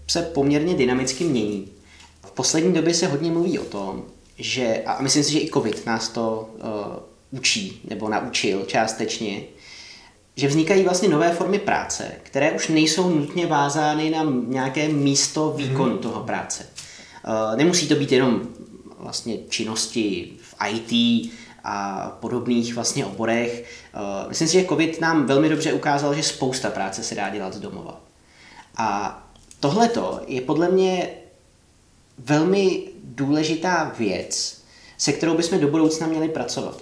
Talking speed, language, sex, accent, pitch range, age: 140 wpm, Czech, male, native, 115-155 Hz, 20-39